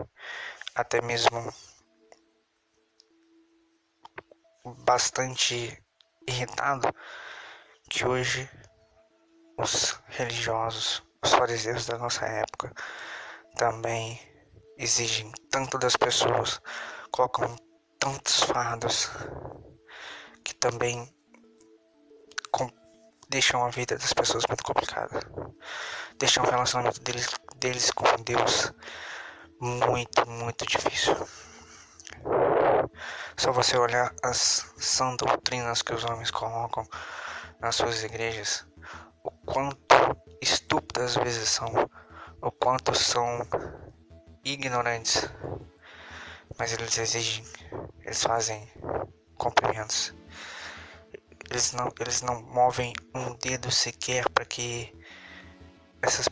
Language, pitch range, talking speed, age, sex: Portuguese, 110-125 Hz, 85 wpm, 20-39, male